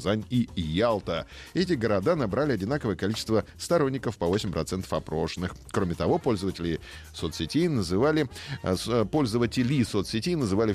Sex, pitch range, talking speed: male, 90-135 Hz, 100 wpm